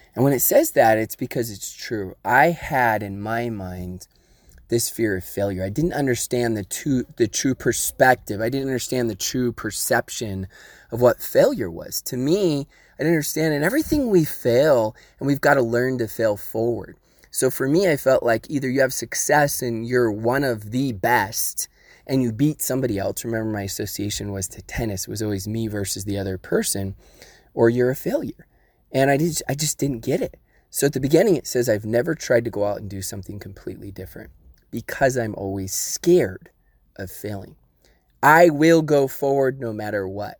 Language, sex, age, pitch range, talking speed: English, male, 20-39, 100-135 Hz, 195 wpm